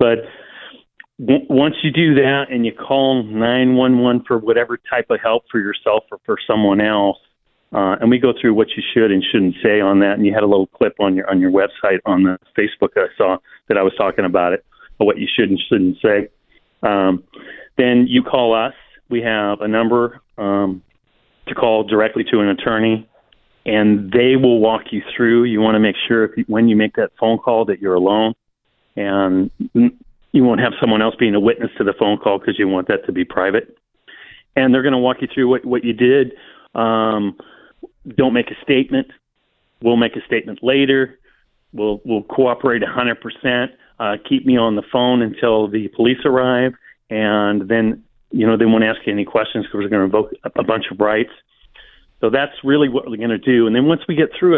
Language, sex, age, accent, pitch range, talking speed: English, male, 40-59, American, 105-130 Hz, 210 wpm